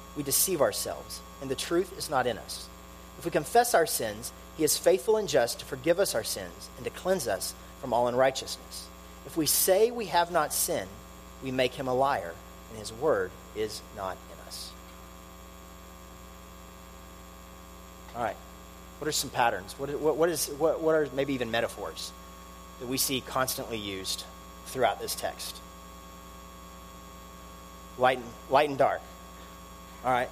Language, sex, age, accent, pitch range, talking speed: English, male, 40-59, American, 90-140 Hz, 160 wpm